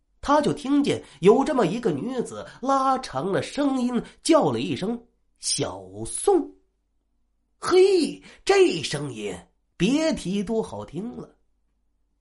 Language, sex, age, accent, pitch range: Chinese, male, 30-49, native, 190-310 Hz